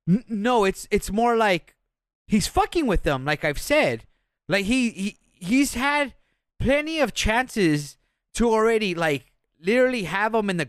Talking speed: 155 wpm